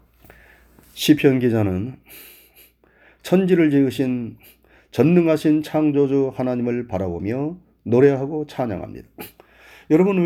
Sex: male